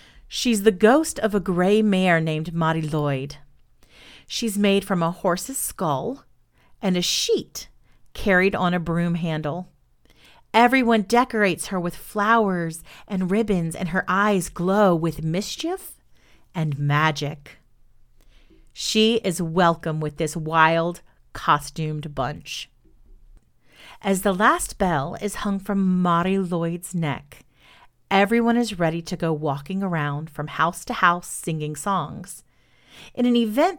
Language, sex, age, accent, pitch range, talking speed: English, female, 40-59, American, 160-210 Hz, 130 wpm